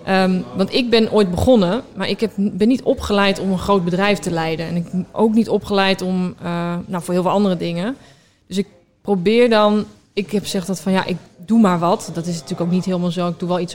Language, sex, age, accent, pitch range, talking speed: Dutch, female, 20-39, Dutch, 175-200 Hz, 250 wpm